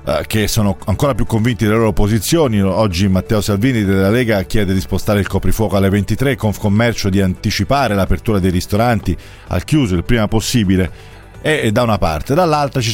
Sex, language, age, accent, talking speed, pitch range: male, Italian, 40-59, native, 180 wpm, 100-125 Hz